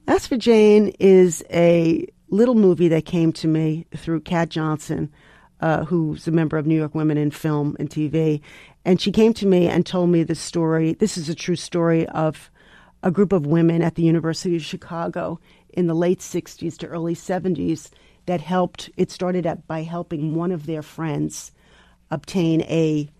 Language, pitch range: English, 155-185 Hz